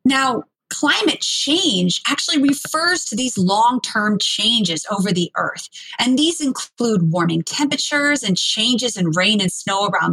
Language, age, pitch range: English, 30-49, 200-285 Hz